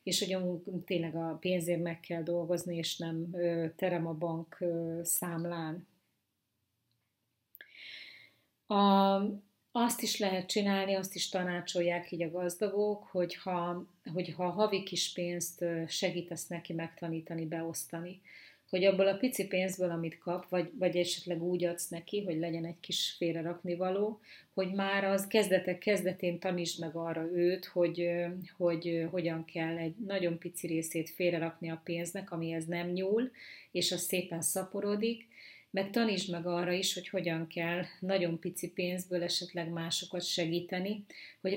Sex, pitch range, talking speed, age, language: female, 170-190 Hz, 140 wpm, 30-49, Hungarian